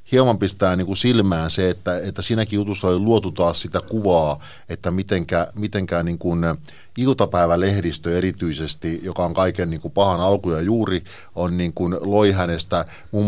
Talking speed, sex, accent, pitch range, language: 150 wpm, male, native, 85-110 Hz, Finnish